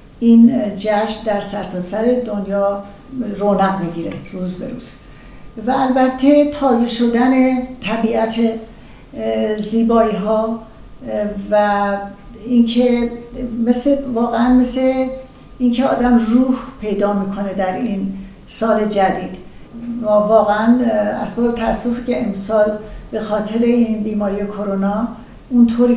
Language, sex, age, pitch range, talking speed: Persian, female, 60-79, 205-235 Hz, 95 wpm